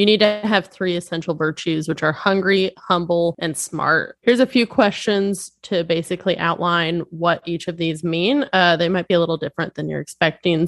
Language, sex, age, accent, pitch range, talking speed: English, female, 20-39, American, 170-200 Hz, 195 wpm